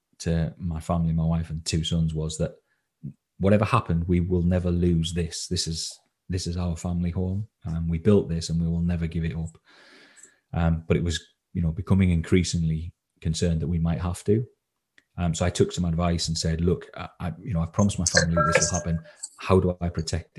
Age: 30-49